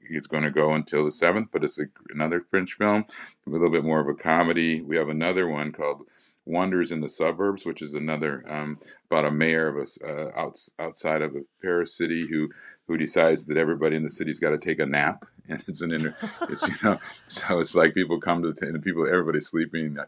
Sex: male